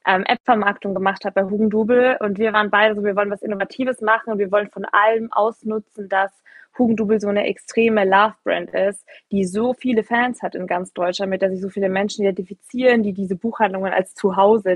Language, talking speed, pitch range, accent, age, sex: German, 195 wpm, 195-225 Hz, German, 20-39, female